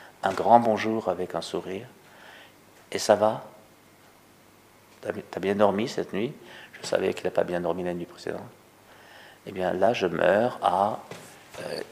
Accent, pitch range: French, 100-120 Hz